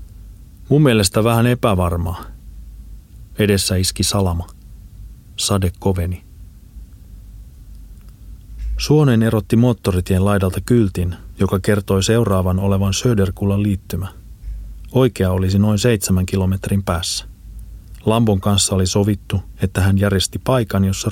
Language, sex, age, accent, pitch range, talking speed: Finnish, male, 30-49, native, 95-110 Hz, 100 wpm